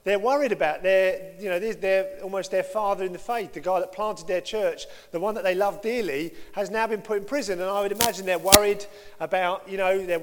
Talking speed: 245 wpm